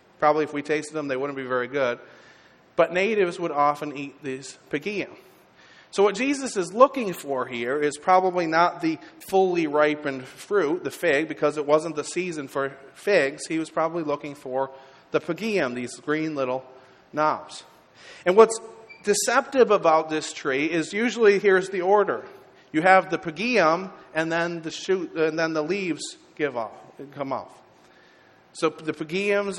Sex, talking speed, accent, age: male, 165 wpm, American, 40-59